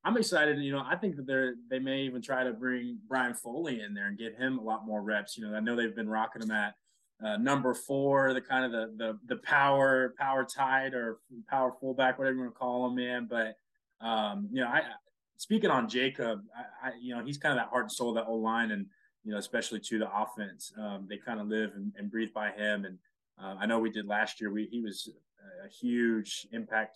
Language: English